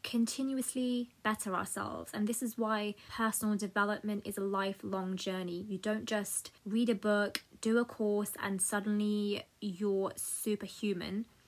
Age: 20-39